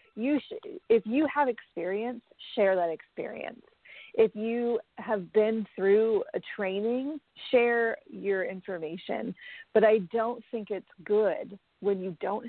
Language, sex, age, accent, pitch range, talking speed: English, female, 40-59, American, 185-235 Hz, 130 wpm